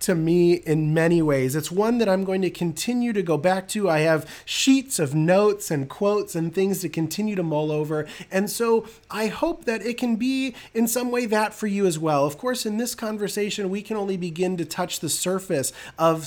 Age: 30-49